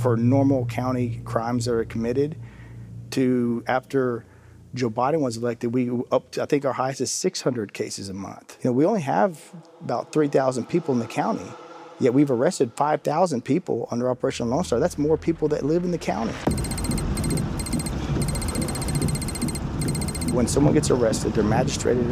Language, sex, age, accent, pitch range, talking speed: English, male, 40-59, American, 105-125 Hz, 160 wpm